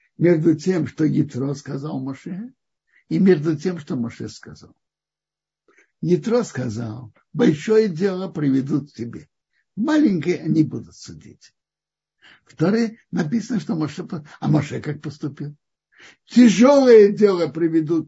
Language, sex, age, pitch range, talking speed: Russian, male, 60-79, 155-225 Hz, 115 wpm